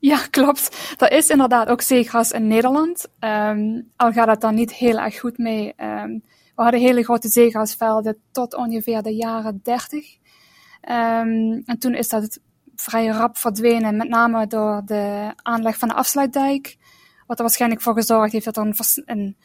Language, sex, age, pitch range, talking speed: Dutch, female, 10-29, 220-250 Hz, 165 wpm